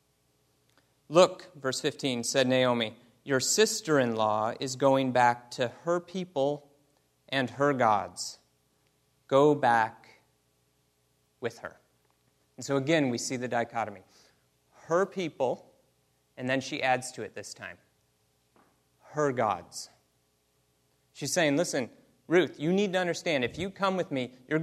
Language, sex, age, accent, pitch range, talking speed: English, male, 30-49, American, 105-150 Hz, 130 wpm